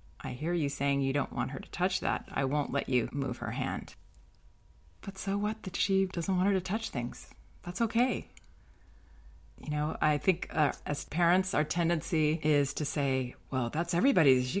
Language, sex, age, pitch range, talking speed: English, female, 30-49, 140-180 Hz, 195 wpm